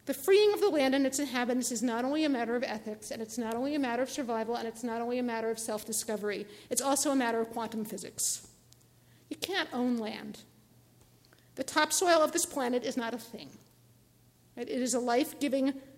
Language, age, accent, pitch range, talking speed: English, 50-69, American, 220-275 Hz, 205 wpm